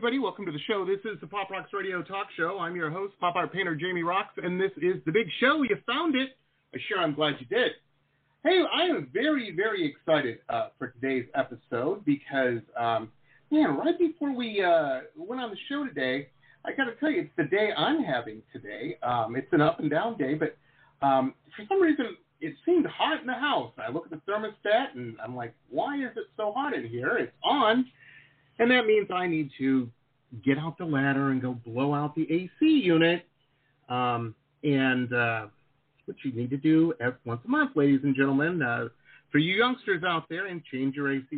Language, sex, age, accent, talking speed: English, male, 40-59, American, 210 wpm